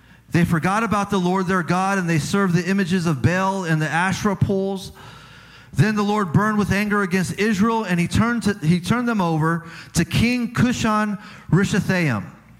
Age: 30-49